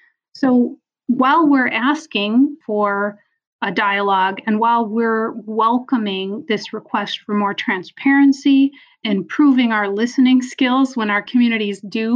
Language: English